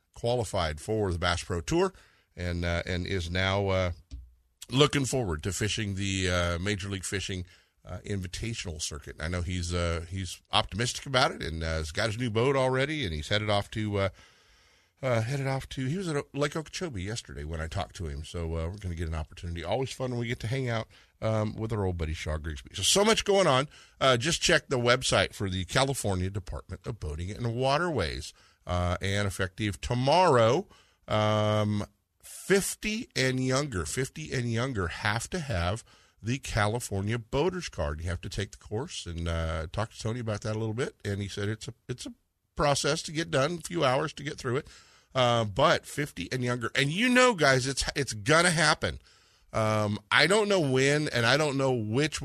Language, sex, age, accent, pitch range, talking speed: English, male, 50-69, American, 90-130 Hz, 205 wpm